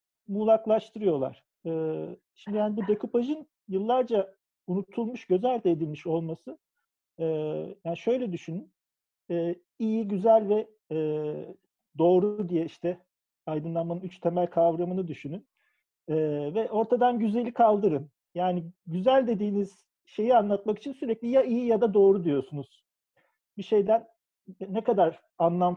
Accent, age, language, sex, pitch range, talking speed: native, 50-69, Turkish, male, 170-225 Hz, 120 wpm